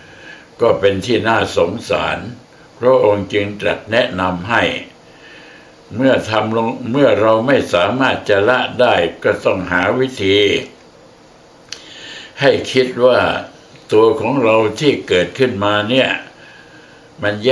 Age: 60-79